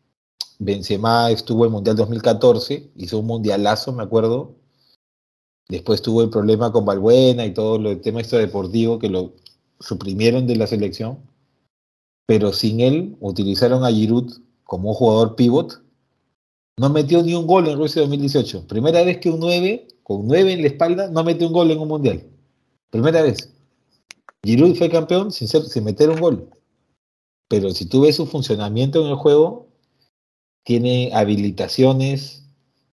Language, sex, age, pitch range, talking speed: Spanish, male, 40-59, 105-130 Hz, 155 wpm